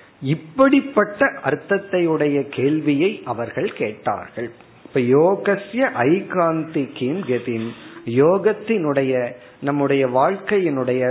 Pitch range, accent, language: 130-185 Hz, native, Tamil